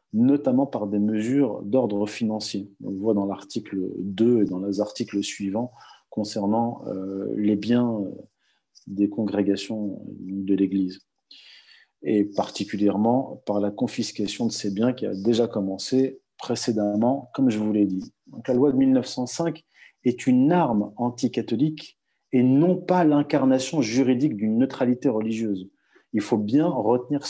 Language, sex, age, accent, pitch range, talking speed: French, male, 40-59, French, 105-135 Hz, 135 wpm